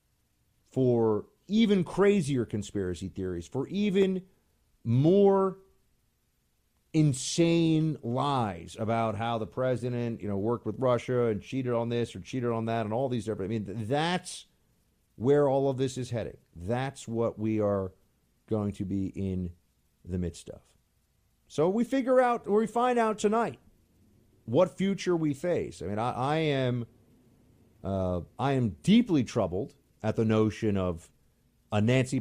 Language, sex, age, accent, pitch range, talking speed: English, male, 40-59, American, 105-150 Hz, 145 wpm